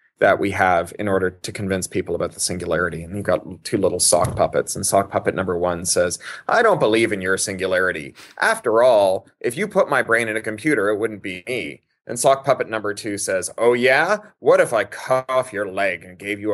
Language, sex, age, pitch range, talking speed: English, male, 30-49, 110-165 Hz, 225 wpm